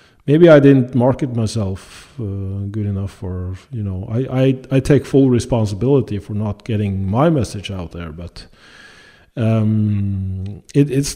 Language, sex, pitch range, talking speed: English, male, 100-130 Hz, 150 wpm